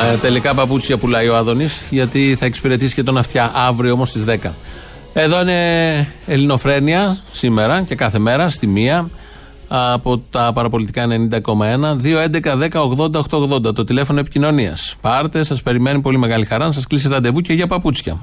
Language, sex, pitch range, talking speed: Greek, male, 115-155 Hz, 150 wpm